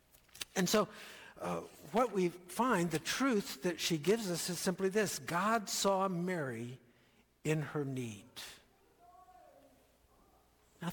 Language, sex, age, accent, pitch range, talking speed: English, male, 60-79, American, 125-185 Hz, 120 wpm